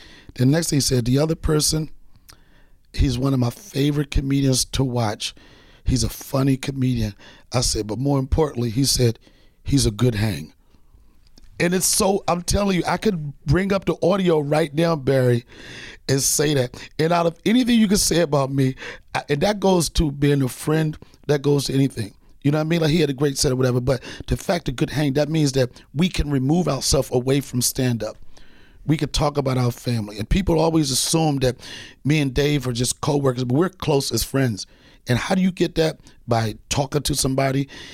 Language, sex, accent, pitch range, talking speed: English, male, American, 125-155 Hz, 210 wpm